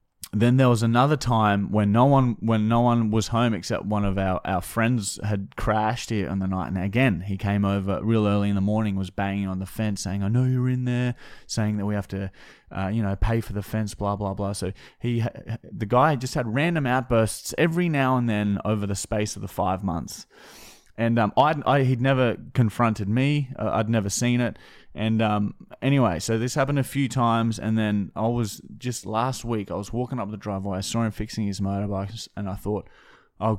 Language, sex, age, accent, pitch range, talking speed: English, male, 20-39, Australian, 100-115 Hz, 220 wpm